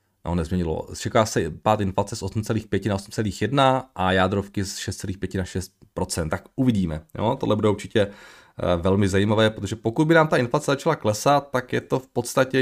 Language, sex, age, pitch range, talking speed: Czech, male, 30-49, 100-130 Hz, 160 wpm